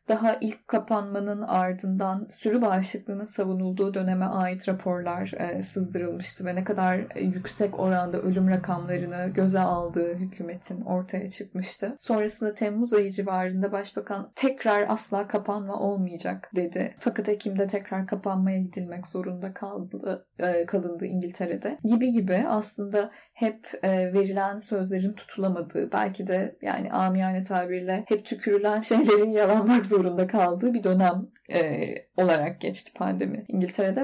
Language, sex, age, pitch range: Turkish, female, 10-29, 185-215 Hz